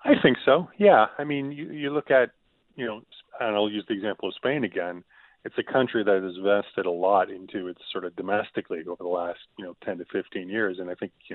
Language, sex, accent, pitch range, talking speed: English, male, American, 90-110 Hz, 250 wpm